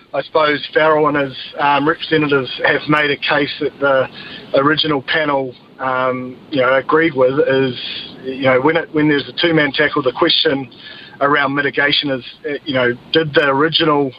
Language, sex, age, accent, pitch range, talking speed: English, male, 30-49, Australian, 125-150 Hz, 170 wpm